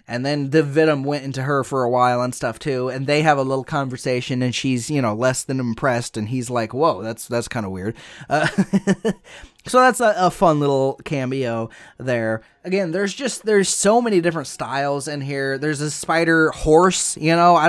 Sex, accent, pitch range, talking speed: male, American, 130-170 Hz, 205 wpm